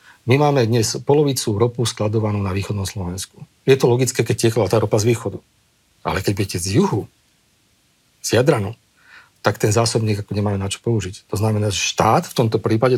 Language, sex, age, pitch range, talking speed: Slovak, male, 40-59, 105-130 Hz, 180 wpm